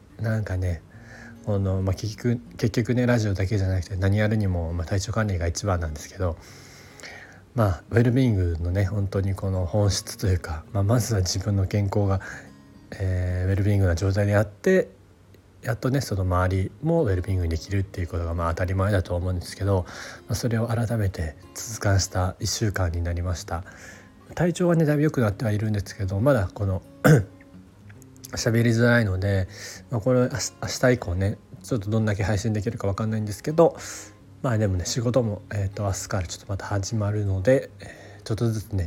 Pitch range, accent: 95-115 Hz, native